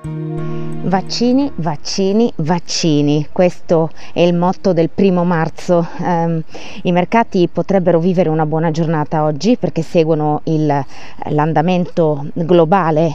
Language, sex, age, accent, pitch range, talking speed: Italian, female, 20-39, native, 155-185 Hz, 110 wpm